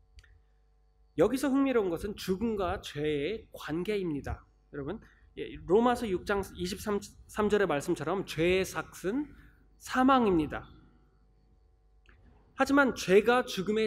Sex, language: male, Korean